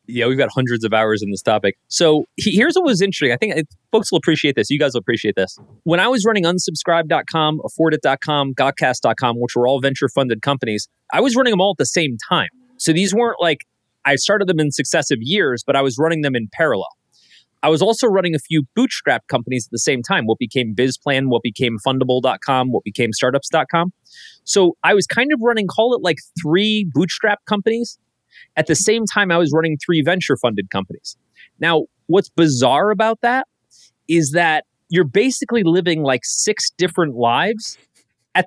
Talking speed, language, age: 190 wpm, English, 30-49